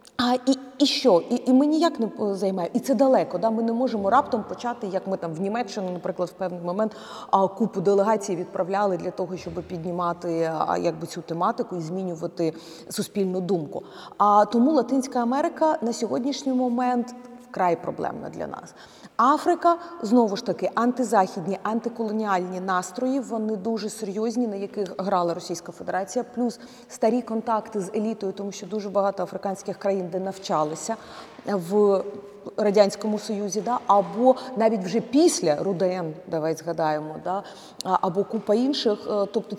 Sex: female